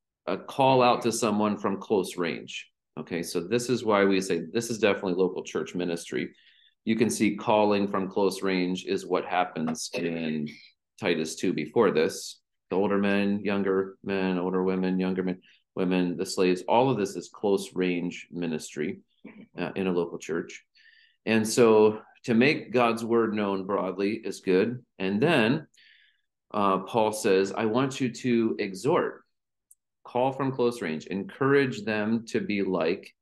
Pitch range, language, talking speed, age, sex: 90-120 Hz, English, 160 wpm, 40-59, male